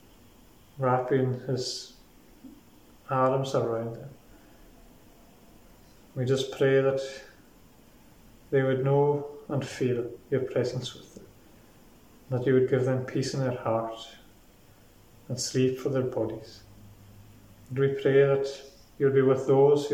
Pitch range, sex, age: 115-135 Hz, male, 30-49